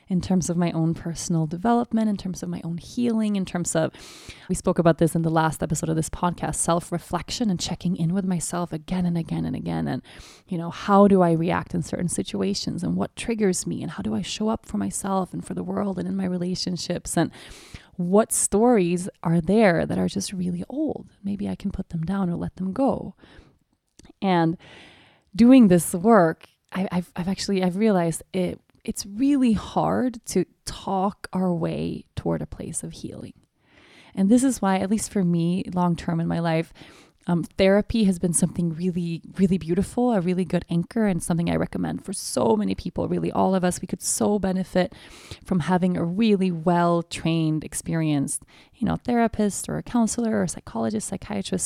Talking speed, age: 195 wpm, 20-39